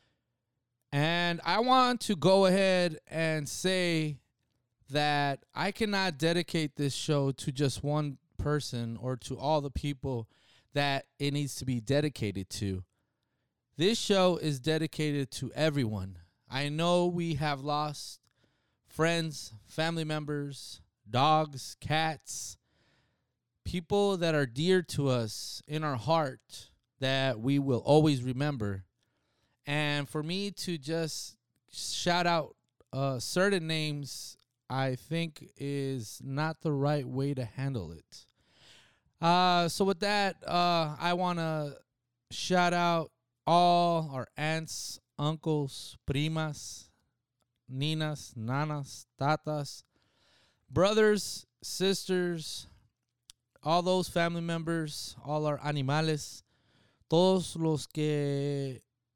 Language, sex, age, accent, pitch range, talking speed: English, male, 20-39, American, 125-165 Hz, 110 wpm